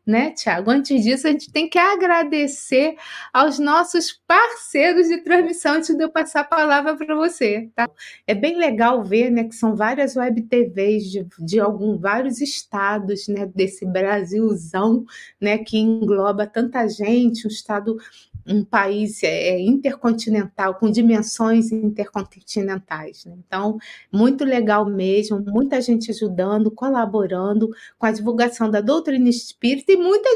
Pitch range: 215-300 Hz